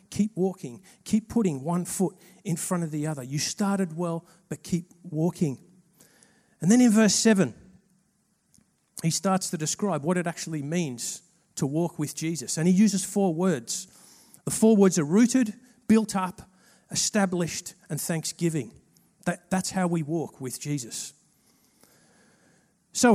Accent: Australian